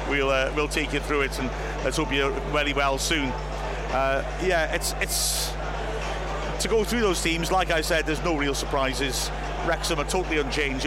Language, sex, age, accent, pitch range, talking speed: English, male, 50-69, British, 140-160 Hz, 190 wpm